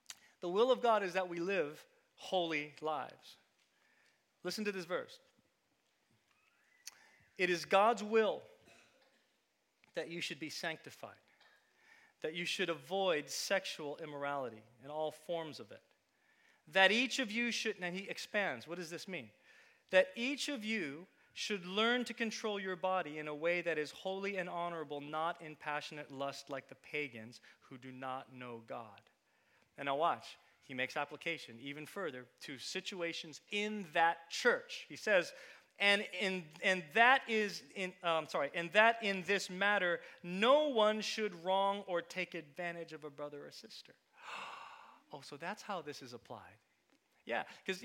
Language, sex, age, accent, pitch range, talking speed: English, male, 40-59, American, 155-210 Hz, 155 wpm